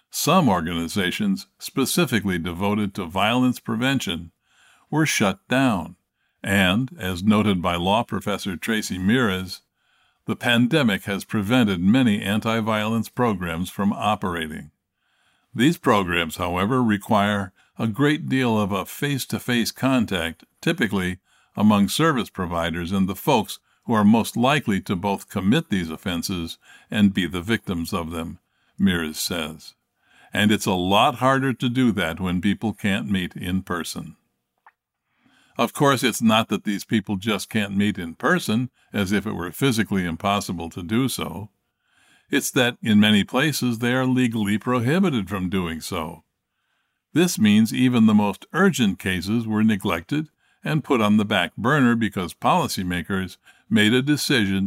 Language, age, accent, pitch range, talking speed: English, 50-69, American, 95-125 Hz, 140 wpm